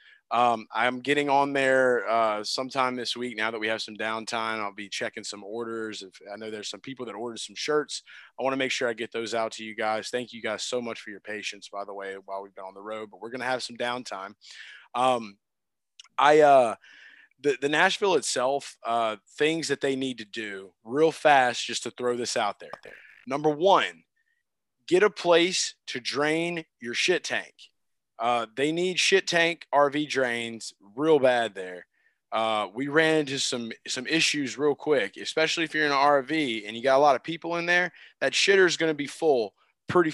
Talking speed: 210 wpm